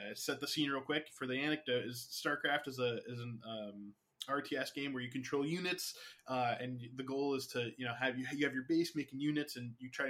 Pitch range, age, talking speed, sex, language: 125-155 Hz, 20-39, 240 wpm, male, English